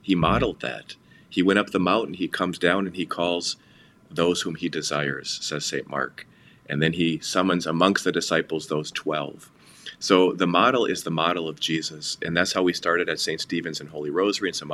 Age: 30-49